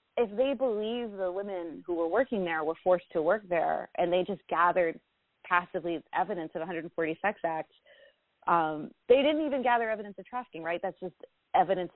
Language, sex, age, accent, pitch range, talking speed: English, female, 30-49, American, 170-200 Hz, 180 wpm